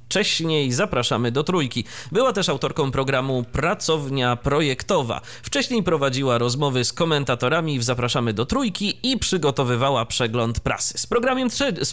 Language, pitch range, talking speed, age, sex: Polish, 120-170 Hz, 125 wpm, 30-49, male